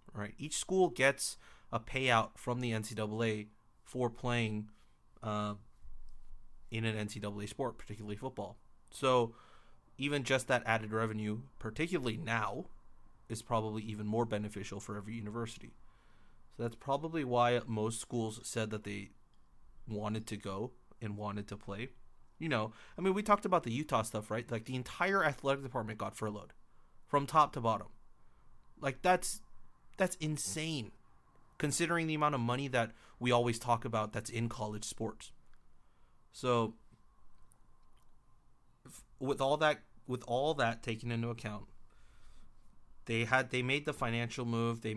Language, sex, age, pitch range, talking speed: English, male, 30-49, 110-125 Hz, 145 wpm